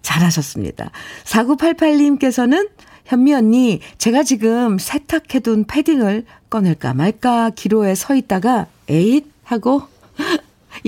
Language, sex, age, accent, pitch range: Korean, female, 50-69, native, 155-235 Hz